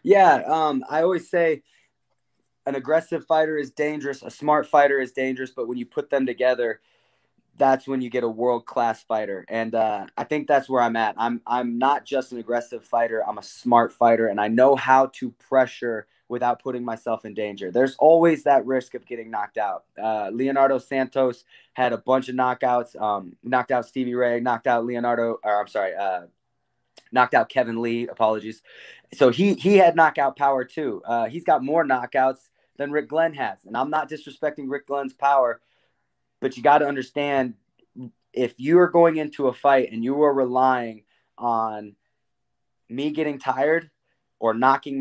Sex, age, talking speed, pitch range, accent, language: male, 20-39, 185 wpm, 120-140 Hz, American, English